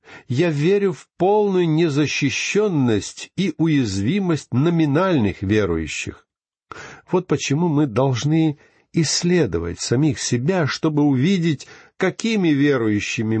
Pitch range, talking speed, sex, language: 110-155 Hz, 90 wpm, male, Russian